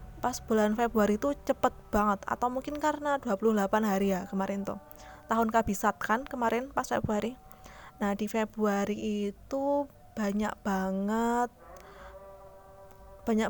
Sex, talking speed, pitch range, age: female, 120 wpm, 200-245 Hz, 20-39